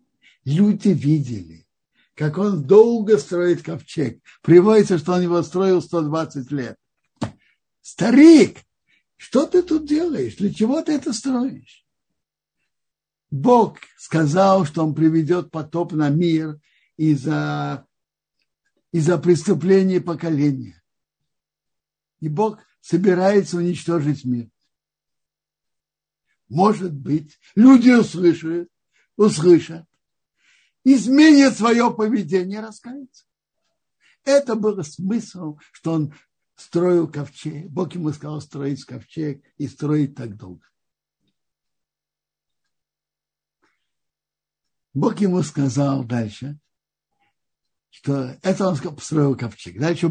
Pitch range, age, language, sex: 145-195 Hz, 60-79, Russian, male